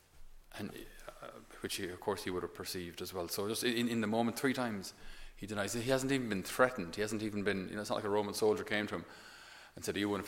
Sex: male